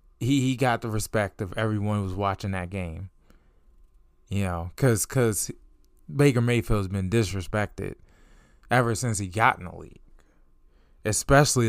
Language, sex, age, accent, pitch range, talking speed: English, male, 20-39, American, 90-120 Hz, 145 wpm